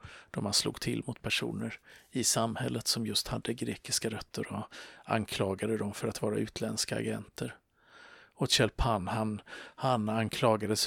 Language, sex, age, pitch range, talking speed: Swedish, male, 50-69, 105-115 Hz, 140 wpm